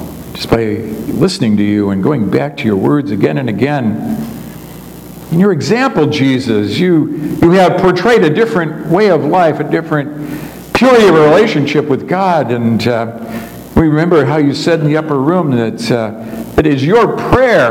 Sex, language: male, English